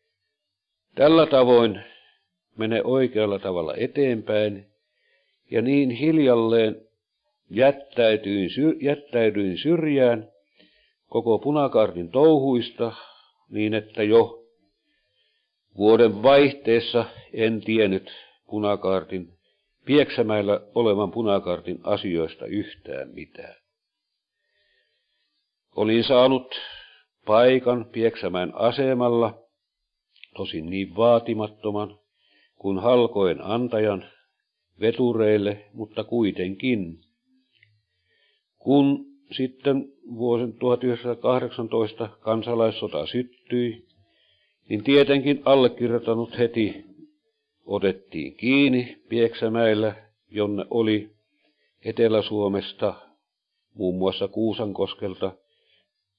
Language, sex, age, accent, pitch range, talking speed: Finnish, male, 60-79, native, 105-125 Hz, 65 wpm